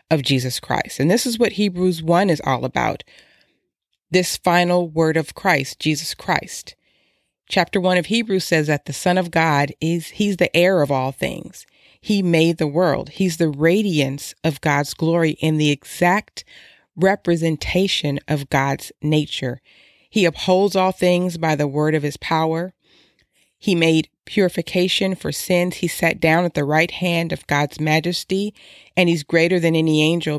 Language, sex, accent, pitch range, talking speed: English, female, American, 150-180 Hz, 165 wpm